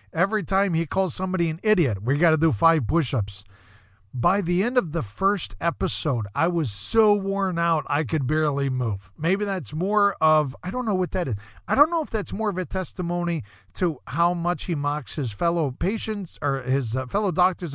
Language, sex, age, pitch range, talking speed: English, male, 40-59, 115-170 Hz, 205 wpm